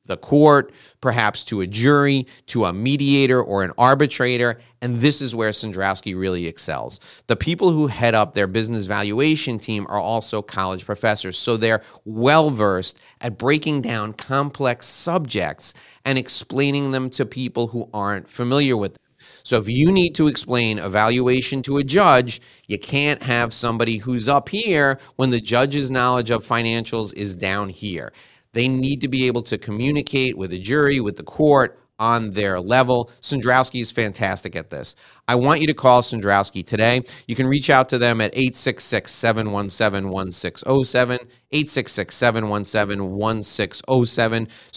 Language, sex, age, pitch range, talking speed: English, male, 30-49, 105-135 Hz, 155 wpm